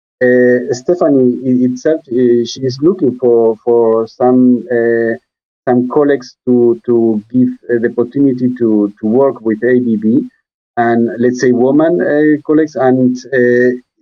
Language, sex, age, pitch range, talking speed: English, male, 50-69, 115-135 Hz, 135 wpm